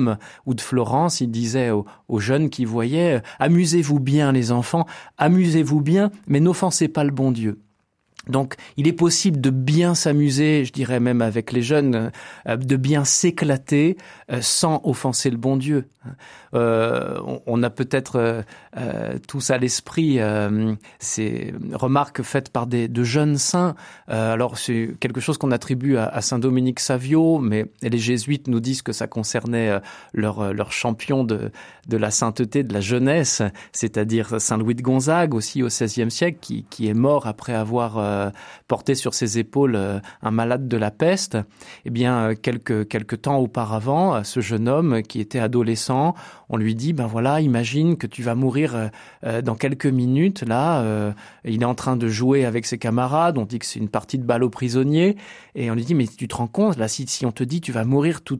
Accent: French